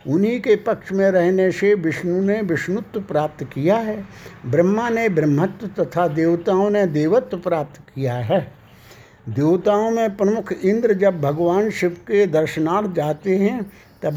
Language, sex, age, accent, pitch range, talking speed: Hindi, male, 60-79, native, 150-200 Hz, 145 wpm